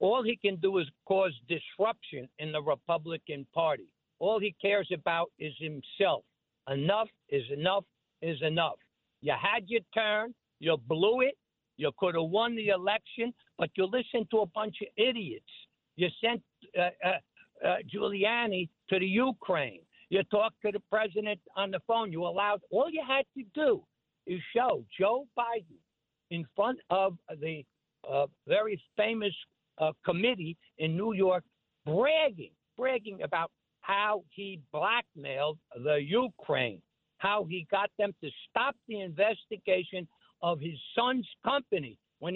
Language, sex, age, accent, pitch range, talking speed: English, male, 60-79, American, 165-220 Hz, 145 wpm